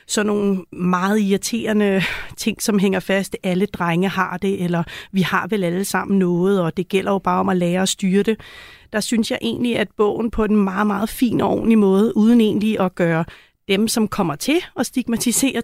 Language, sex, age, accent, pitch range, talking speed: Danish, female, 30-49, native, 195-230 Hz, 205 wpm